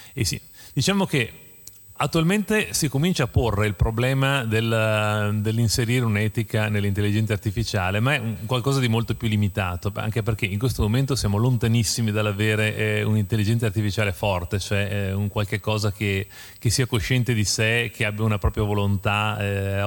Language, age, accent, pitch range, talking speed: Italian, 30-49, native, 100-120 Hz, 160 wpm